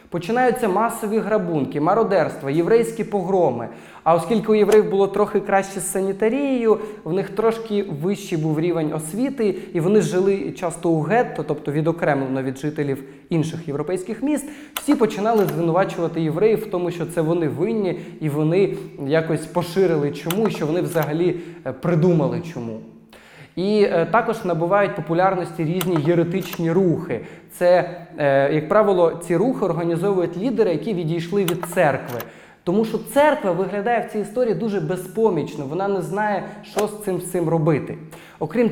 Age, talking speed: 20-39, 145 wpm